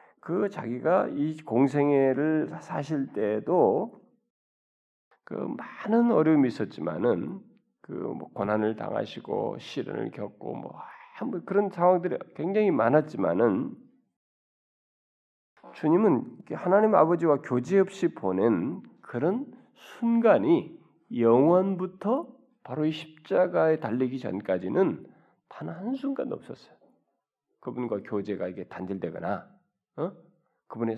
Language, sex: Korean, male